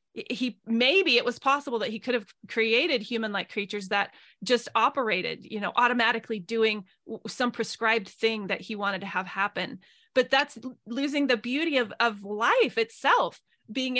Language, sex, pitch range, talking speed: English, female, 215-255 Hz, 165 wpm